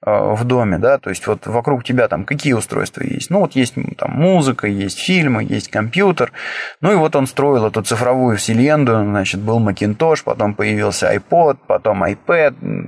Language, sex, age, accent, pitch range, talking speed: Russian, male, 20-39, native, 115-145 Hz, 170 wpm